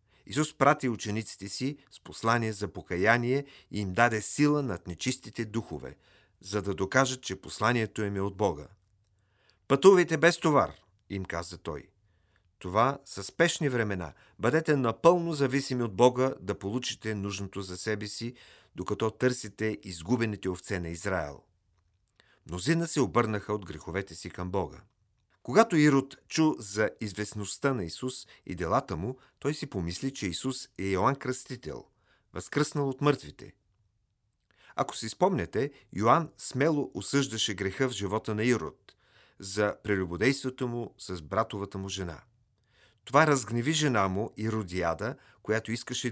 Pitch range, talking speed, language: 95-130 Hz, 135 wpm, Bulgarian